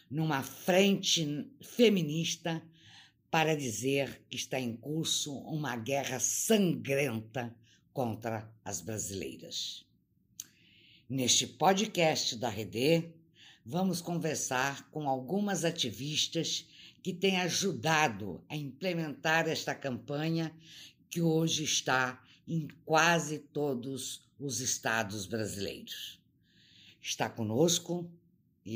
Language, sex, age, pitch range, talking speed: Portuguese, female, 60-79, 120-160 Hz, 90 wpm